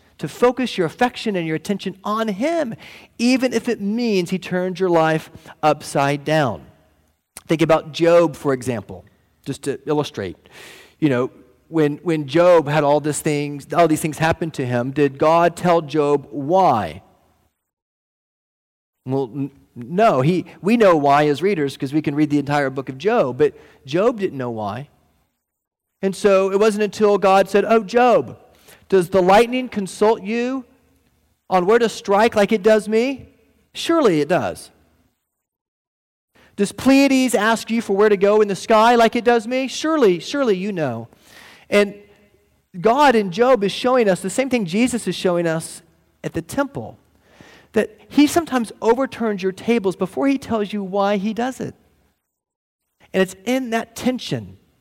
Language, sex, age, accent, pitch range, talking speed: English, male, 40-59, American, 150-230 Hz, 160 wpm